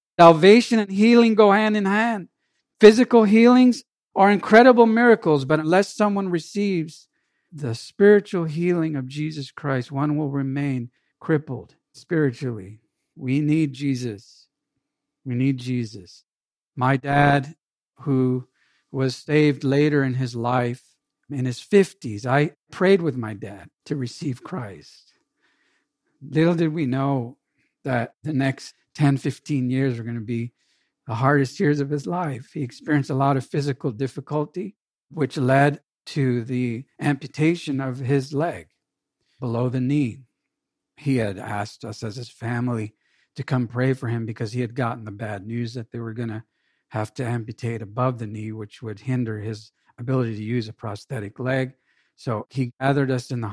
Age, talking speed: 50-69, 155 wpm